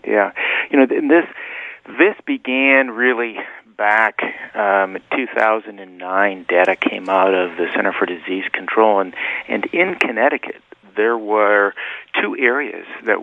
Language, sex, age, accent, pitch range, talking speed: English, male, 50-69, American, 110-140 Hz, 140 wpm